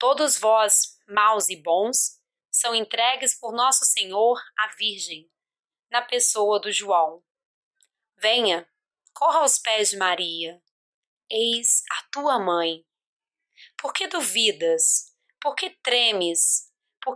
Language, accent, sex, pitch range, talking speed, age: Portuguese, Brazilian, female, 190-245 Hz, 115 wpm, 20-39